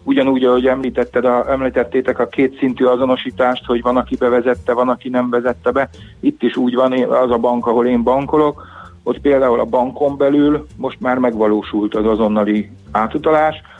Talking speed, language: 160 wpm, Hungarian